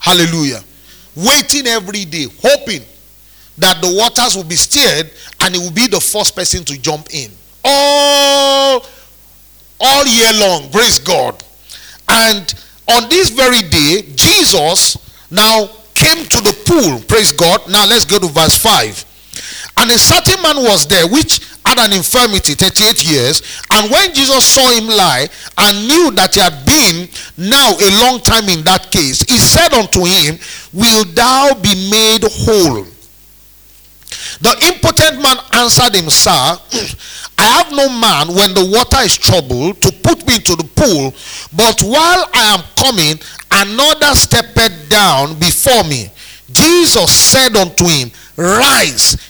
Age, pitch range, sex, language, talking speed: 40-59, 165-255 Hz, male, English, 145 wpm